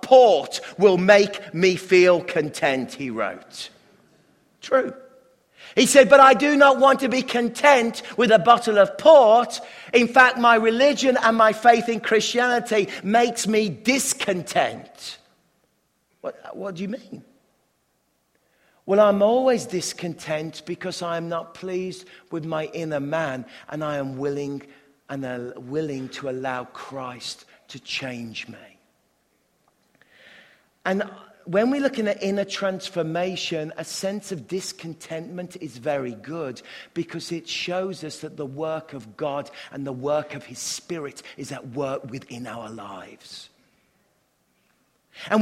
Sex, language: male, English